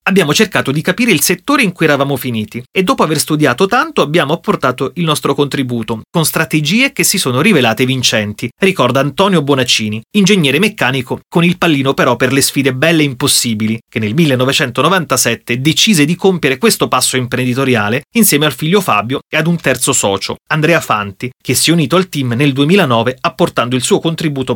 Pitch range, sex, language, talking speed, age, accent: 125-185 Hz, male, Italian, 180 wpm, 30-49, native